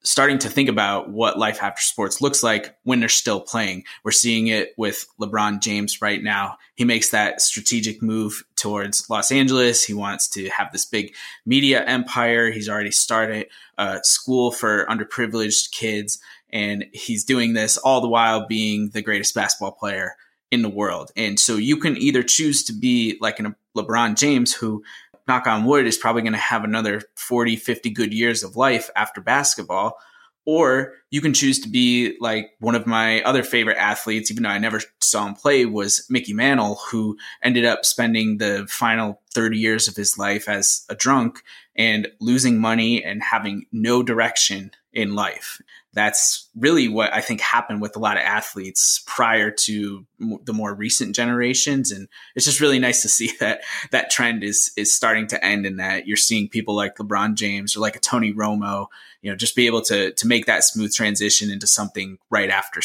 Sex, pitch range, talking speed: male, 105-120 Hz, 190 wpm